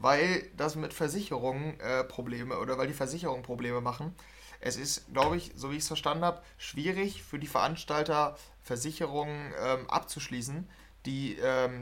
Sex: male